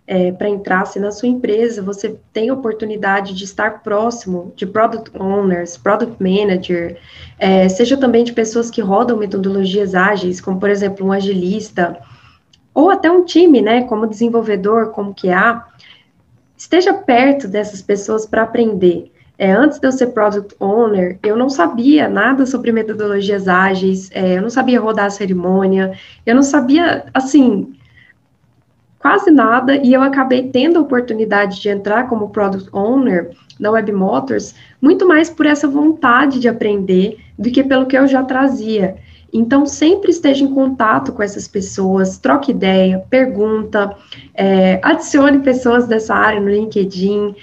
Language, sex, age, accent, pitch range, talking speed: Portuguese, female, 20-39, Brazilian, 200-265 Hz, 155 wpm